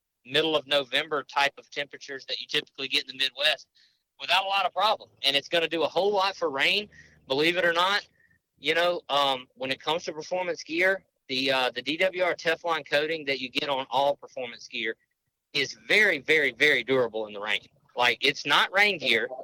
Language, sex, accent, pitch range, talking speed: English, male, American, 135-180 Hz, 205 wpm